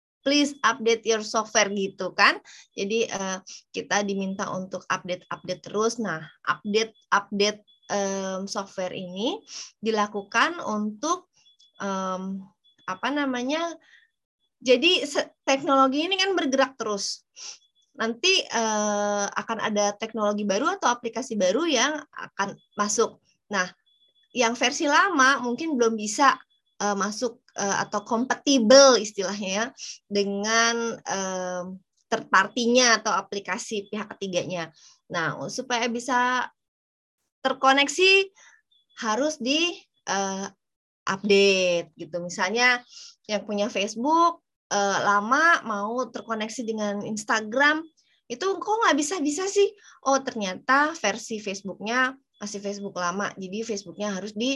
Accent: native